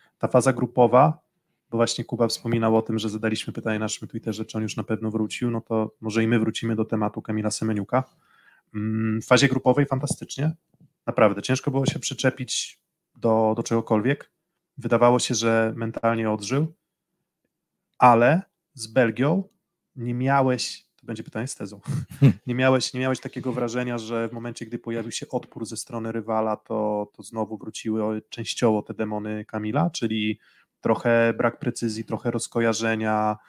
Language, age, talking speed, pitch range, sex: Polish, 20-39, 150 wpm, 110-130 Hz, male